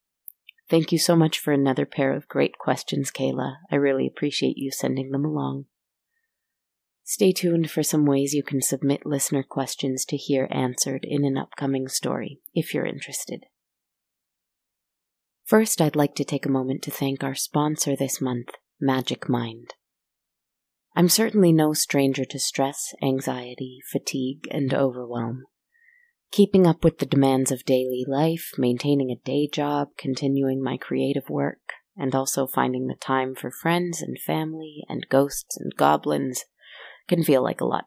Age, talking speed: 30-49, 155 wpm